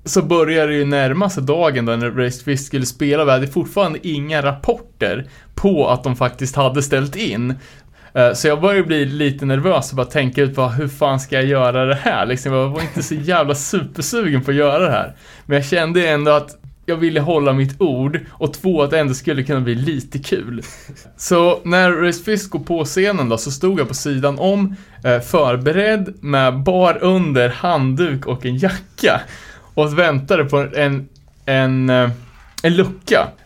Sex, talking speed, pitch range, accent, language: male, 185 wpm, 130-170 Hz, Norwegian, Swedish